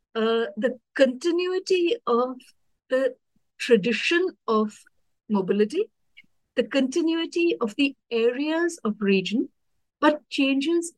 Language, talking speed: English, 95 wpm